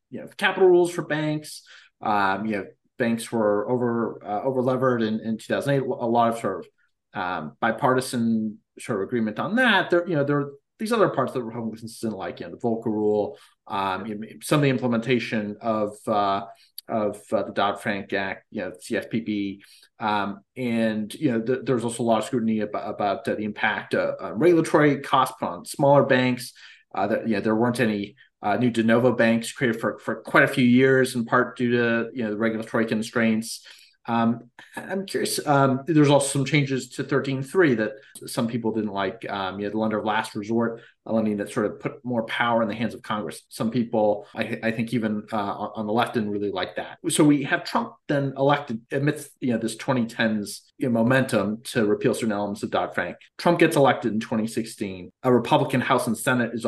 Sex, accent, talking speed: male, American, 210 wpm